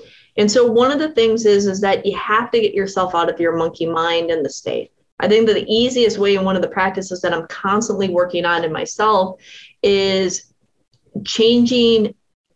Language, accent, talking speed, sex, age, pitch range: English, American, 200 wpm, female, 30-49, 185-230 Hz